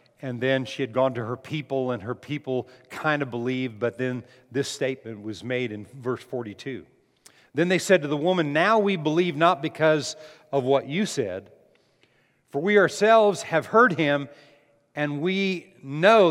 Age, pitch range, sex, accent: 50-69, 135-205 Hz, male, American